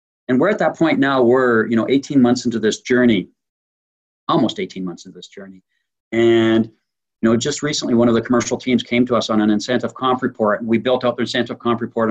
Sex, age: male, 50-69